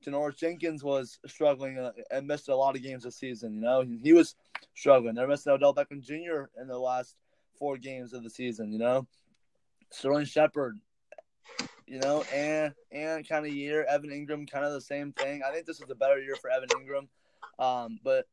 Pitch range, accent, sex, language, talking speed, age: 125-150 Hz, American, male, English, 195 wpm, 20-39